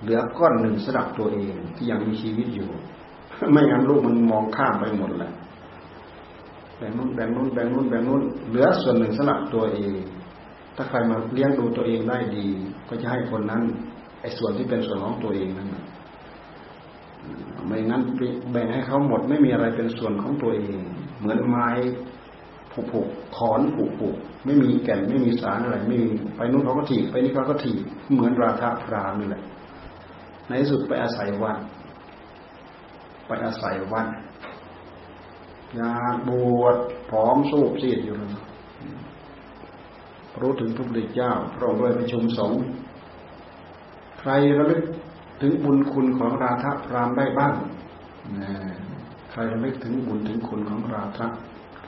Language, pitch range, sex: Thai, 105-130 Hz, male